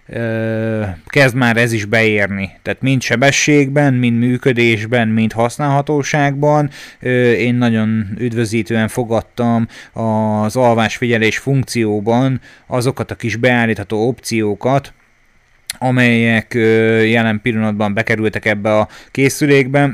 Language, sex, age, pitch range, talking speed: Hungarian, male, 30-49, 110-130 Hz, 95 wpm